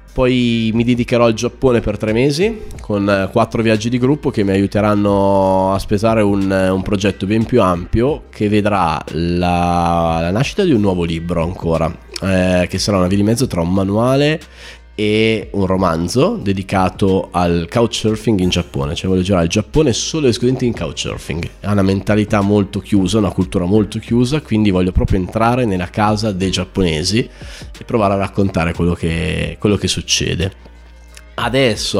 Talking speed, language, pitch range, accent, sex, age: 170 wpm, Italian, 90-110 Hz, native, male, 20-39